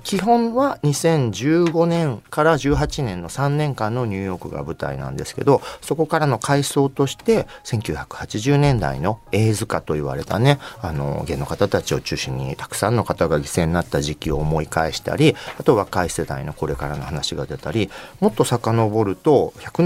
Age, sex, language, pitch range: 40-59, male, Japanese, 95-145 Hz